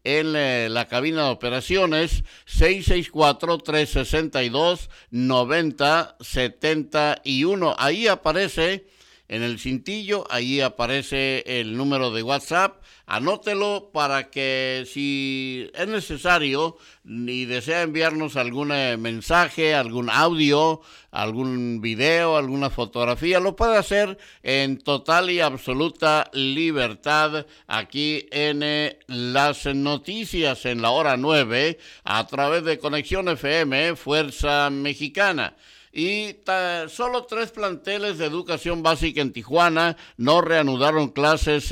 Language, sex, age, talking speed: Spanish, male, 60-79, 105 wpm